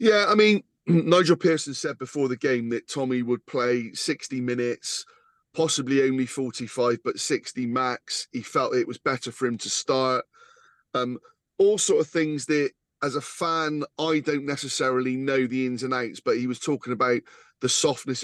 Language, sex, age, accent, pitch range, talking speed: English, male, 30-49, British, 120-150 Hz, 180 wpm